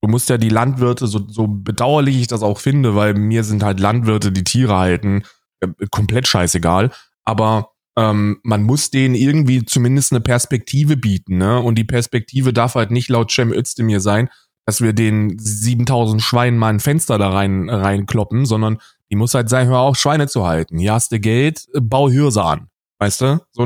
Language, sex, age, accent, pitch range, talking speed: German, male, 20-39, German, 110-155 Hz, 190 wpm